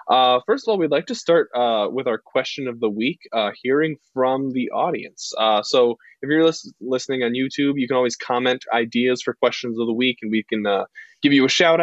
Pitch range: 105-130 Hz